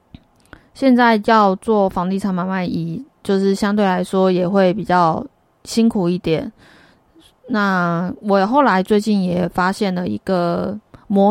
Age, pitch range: 20-39, 170-210 Hz